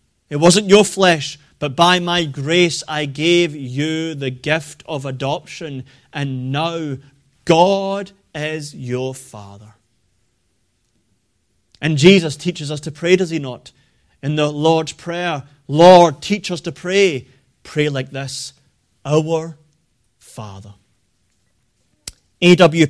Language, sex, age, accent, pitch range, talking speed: English, male, 30-49, British, 130-175 Hz, 120 wpm